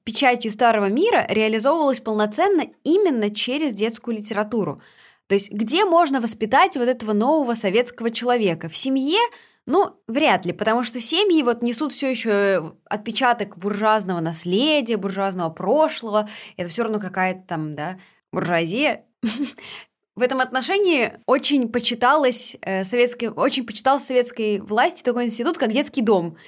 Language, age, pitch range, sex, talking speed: Russian, 20-39, 205-270 Hz, female, 135 wpm